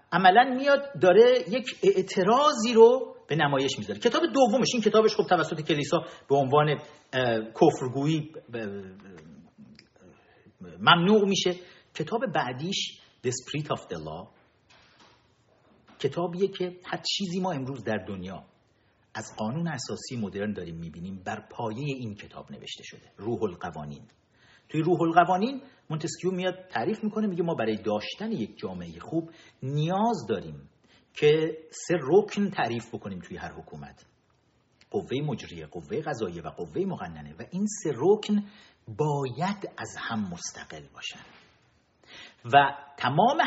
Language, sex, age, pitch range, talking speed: Persian, male, 50-69, 130-195 Hz, 130 wpm